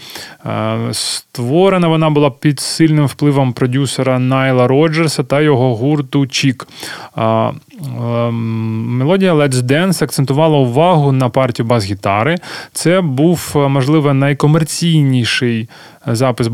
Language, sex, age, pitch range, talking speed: Ukrainian, male, 20-39, 125-155 Hz, 95 wpm